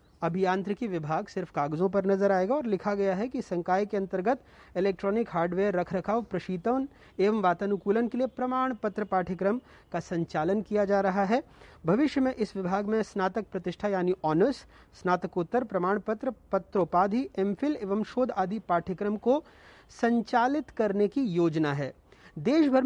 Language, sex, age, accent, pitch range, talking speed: Hindi, male, 40-59, native, 185-225 Hz, 150 wpm